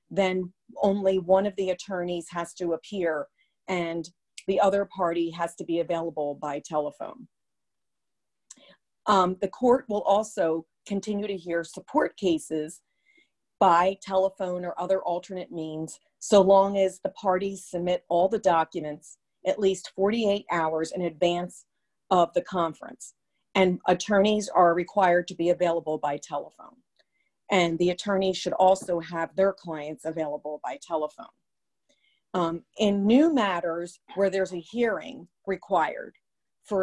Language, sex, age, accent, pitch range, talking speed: English, female, 40-59, American, 170-195 Hz, 135 wpm